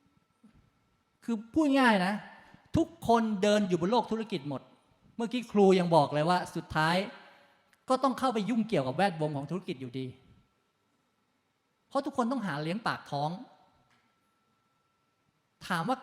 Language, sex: Thai, male